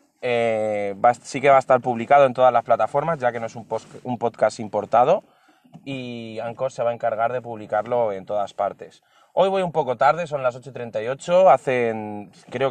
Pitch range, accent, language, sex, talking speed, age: 110-140 Hz, Spanish, Spanish, male, 200 wpm, 20-39